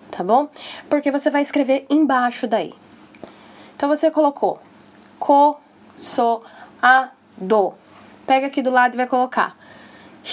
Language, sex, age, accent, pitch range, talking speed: Portuguese, female, 10-29, Brazilian, 220-275 Hz, 130 wpm